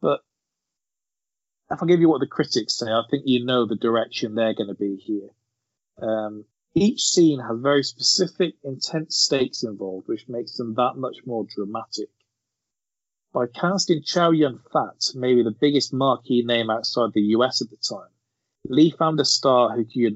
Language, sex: English, male